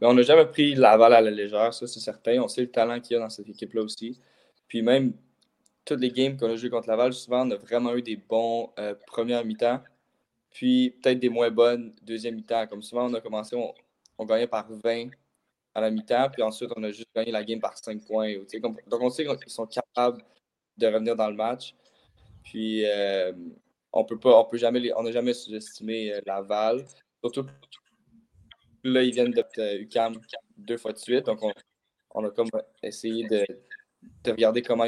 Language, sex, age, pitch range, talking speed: French, male, 20-39, 110-125 Hz, 195 wpm